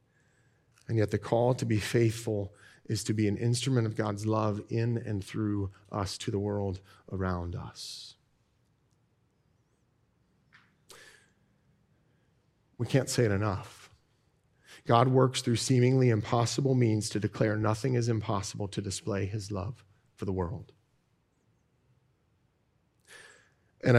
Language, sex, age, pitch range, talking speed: English, male, 40-59, 115-145 Hz, 120 wpm